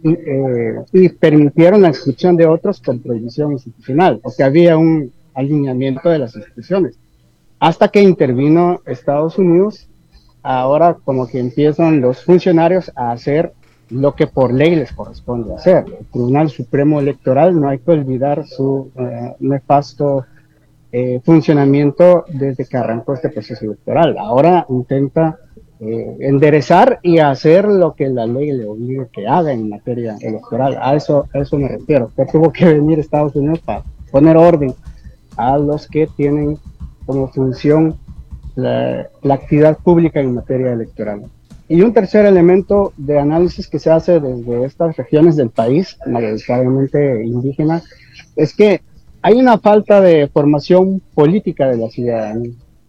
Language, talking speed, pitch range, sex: Spanish, 145 wpm, 125-165 Hz, male